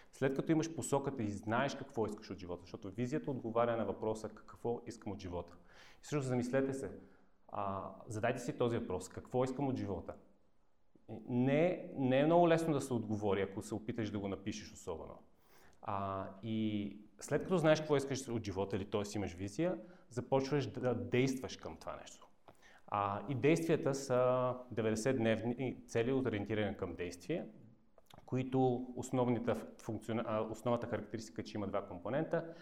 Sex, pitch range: male, 105-130 Hz